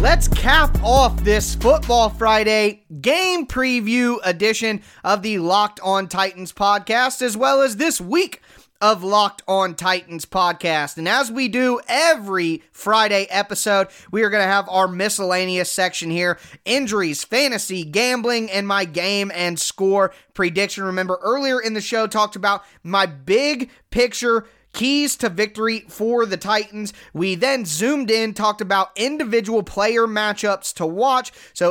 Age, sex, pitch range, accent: 20-39, male, 185-230 Hz, American